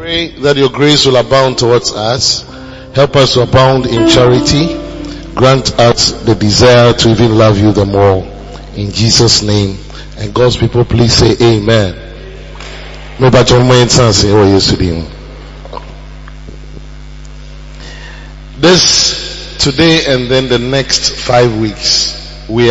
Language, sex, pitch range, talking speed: English, male, 115-140 Hz, 110 wpm